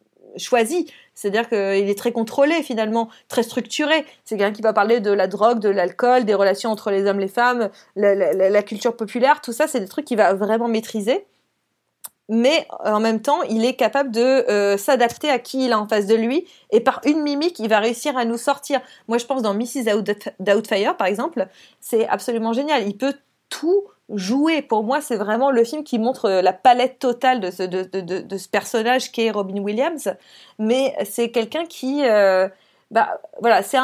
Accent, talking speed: French, 205 wpm